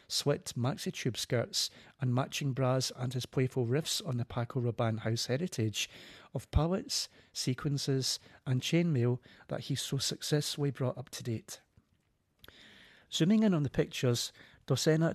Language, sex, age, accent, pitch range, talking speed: English, male, 40-59, British, 120-145 Hz, 140 wpm